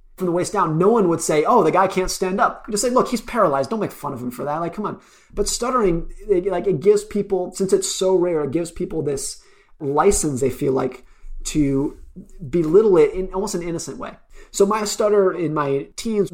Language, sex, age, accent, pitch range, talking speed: English, male, 30-49, American, 145-195 Hz, 230 wpm